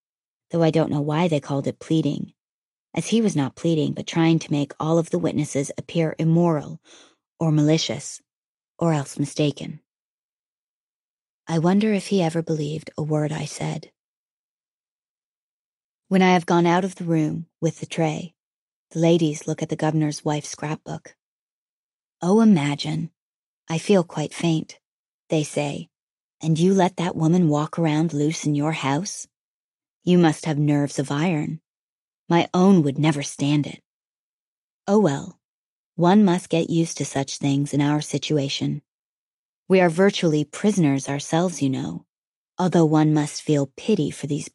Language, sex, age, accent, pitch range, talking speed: English, female, 30-49, American, 150-175 Hz, 155 wpm